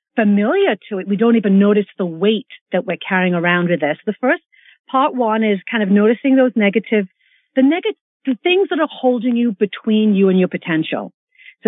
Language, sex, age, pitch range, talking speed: English, female, 50-69, 210-280 Hz, 195 wpm